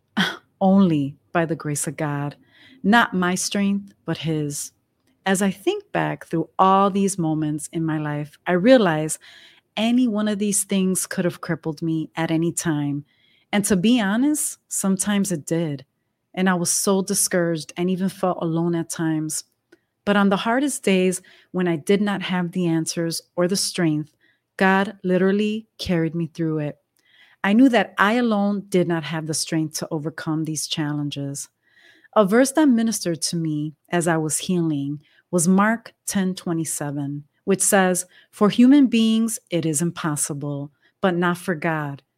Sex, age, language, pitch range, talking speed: female, 30-49, English, 155-200 Hz, 165 wpm